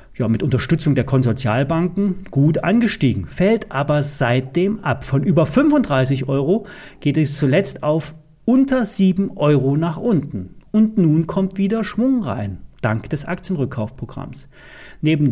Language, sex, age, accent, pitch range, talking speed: German, male, 40-59, German, 130-185 Hz, 130 wpm